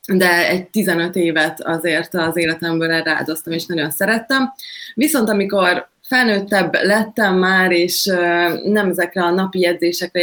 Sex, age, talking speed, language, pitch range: female, 20-39, 130 wpm, Hungarian, 170-200 Hz